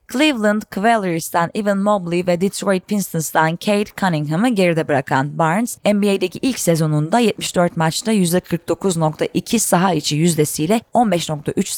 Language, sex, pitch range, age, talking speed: Turkish, female, 170-230 Hz, 30-49, 110 wpm